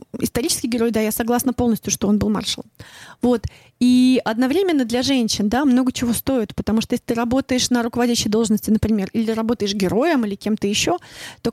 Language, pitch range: Russian, 220-255 Hz